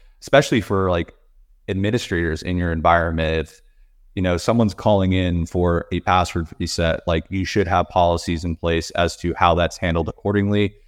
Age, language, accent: 30-49, English, American